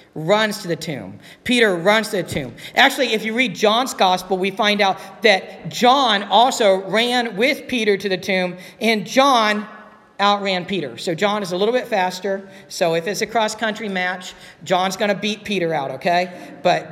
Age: 50-69